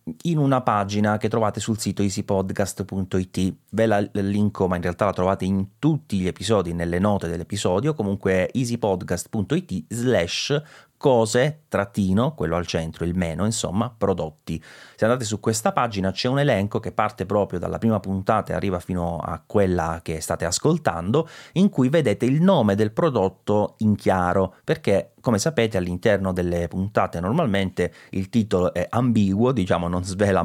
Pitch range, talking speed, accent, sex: 90-110 Hz, 160 wpm, native, male